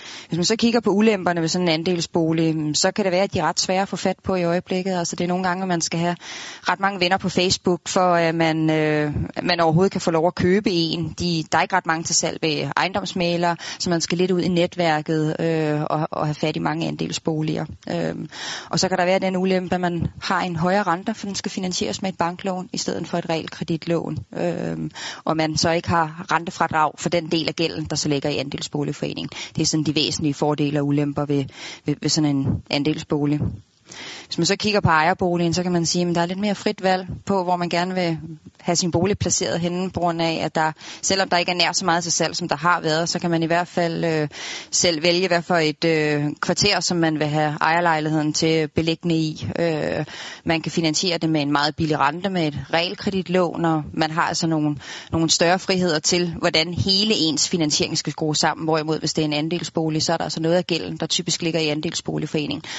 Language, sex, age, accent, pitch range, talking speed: Danish, female, 20-39, native, 155-180 Hz, 235 wpm